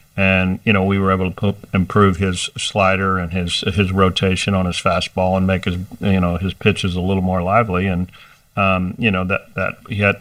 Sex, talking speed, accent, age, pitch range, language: male, 210 wpm, American, 50-69, 95-105 Hz, English